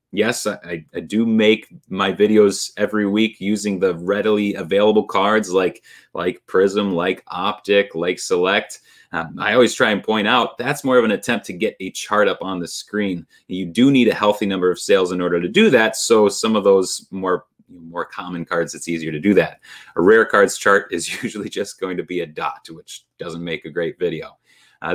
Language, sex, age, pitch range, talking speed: English, male, 30-49, 95-120 Hz, 205 wpm